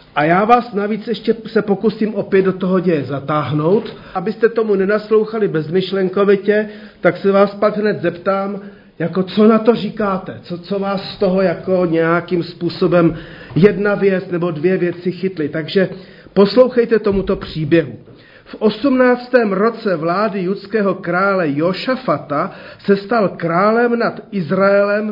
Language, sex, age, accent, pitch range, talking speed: Czech, male, 40-59, native, 165-210 Hz, 135 wpm